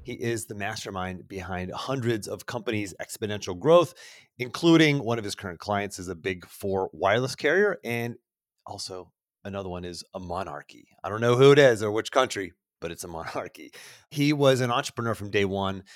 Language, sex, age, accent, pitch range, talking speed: English, male, 30-49, American, 105-130 Hz, 185 wpm